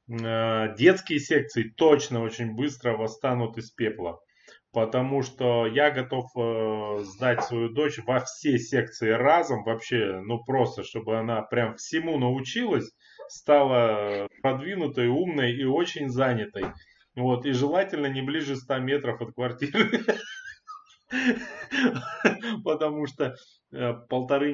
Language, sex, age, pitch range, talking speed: Russian, male, 20-39, 110-140 Hz, 110 wpm